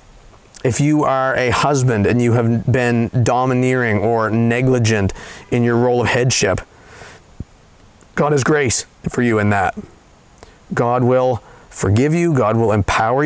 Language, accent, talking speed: English, American, 140 wpm